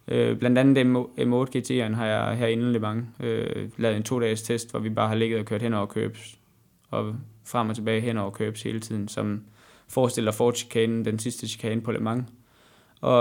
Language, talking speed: Danish, 190 wpm